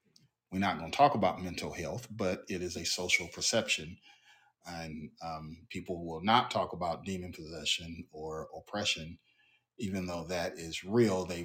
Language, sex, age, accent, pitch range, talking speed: English, male, 40-59, American, 90-115 Hz, 160 wpm